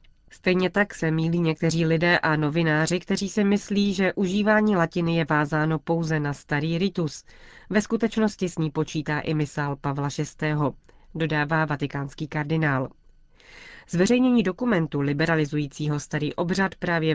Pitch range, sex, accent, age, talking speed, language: 150-180 Hz, female, native, 30-49, 135 wpm, Czech